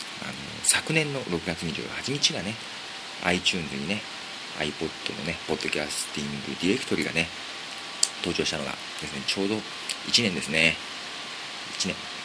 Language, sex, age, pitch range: Japanese, male, 40-59, 90-100 Hz